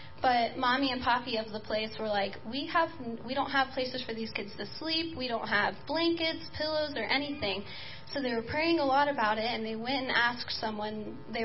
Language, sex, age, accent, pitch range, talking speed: English, female, 10-29, American, 220-285 Hz, 220 wpm